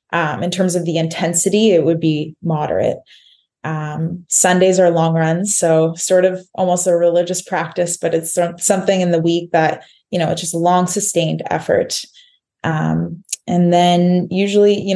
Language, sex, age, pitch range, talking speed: English, female, 20-39, 170-195 Hz, 170 wpm